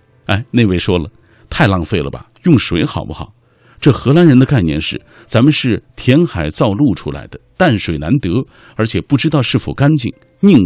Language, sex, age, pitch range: Chinese, male, 50-69, 95-140 Hz